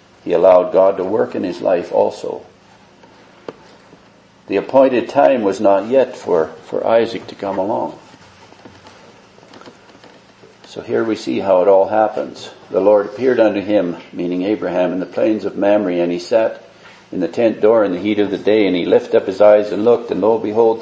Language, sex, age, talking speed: English, male, 60-79, 185 wpm